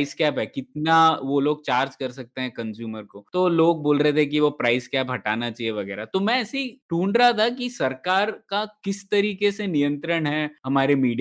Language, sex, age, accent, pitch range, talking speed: Hindi, male, 20-39, native, 145-185 Hz, 95 wpm